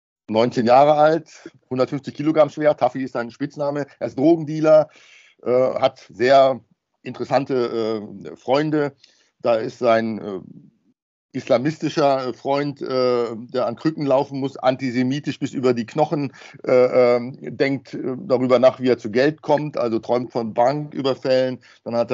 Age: 50-69